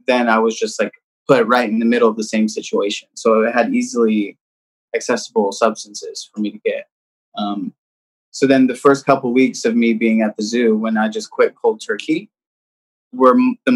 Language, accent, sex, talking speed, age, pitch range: English, American, male, 195 wpm, 20-39, 110-145 Hz